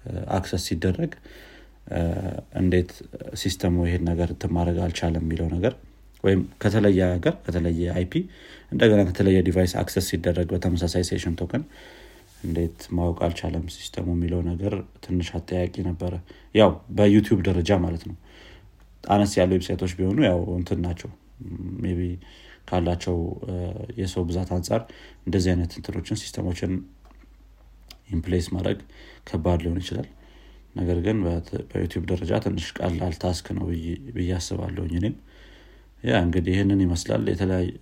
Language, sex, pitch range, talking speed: Amharic, male, 85-100 Hz, 110 wpm